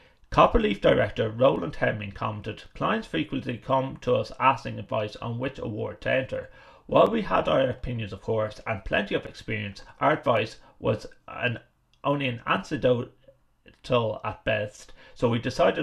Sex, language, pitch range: male, English, 110-135 Hz